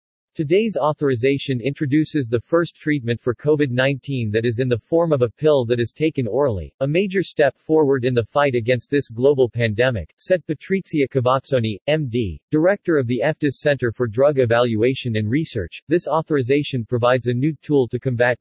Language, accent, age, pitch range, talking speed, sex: English, American, 40-59, 120-150 Hz, 175 wpm, male